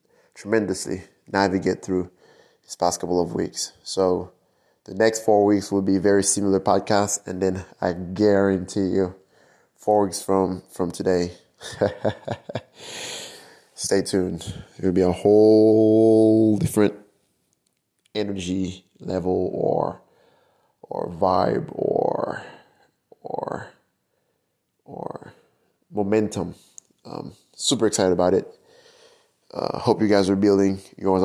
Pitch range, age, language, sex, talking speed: 95-105 Hz, 20-39, English, male, 110 wpm